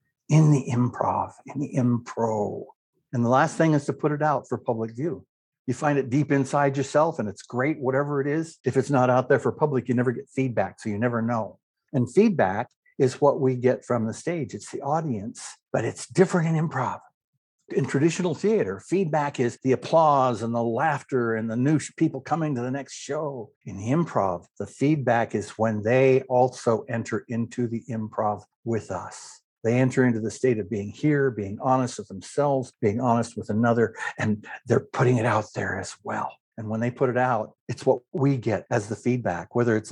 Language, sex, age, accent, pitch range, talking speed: English, male, 60-79, American, 110-140 Hz, 205 wpm